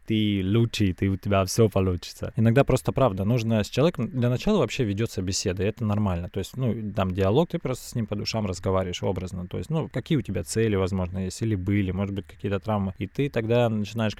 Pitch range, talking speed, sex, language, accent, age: 95-110 Hz, 225 wpm, male, Russian, native, 20-39